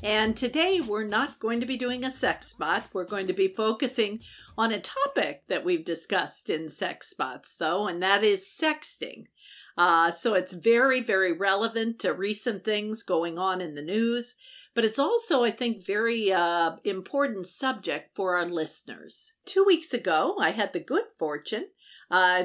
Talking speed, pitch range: 175 wpm, 175-255 Hz